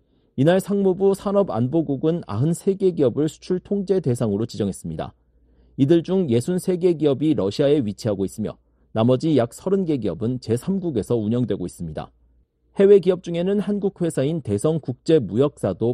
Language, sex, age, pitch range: Korean, male, 40-59, 115-175 Hz